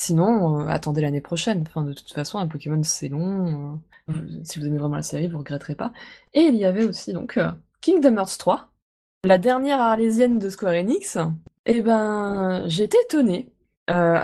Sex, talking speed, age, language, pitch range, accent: female, 190 wpm, 20-39, French, 165-225 Hz, French